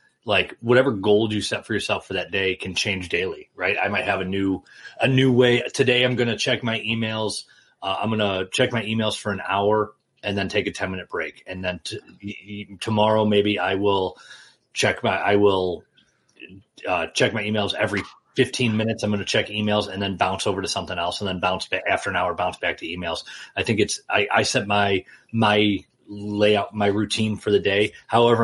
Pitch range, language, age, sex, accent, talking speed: 95-115 Hz, English, 30-49, male, American, 215 wpm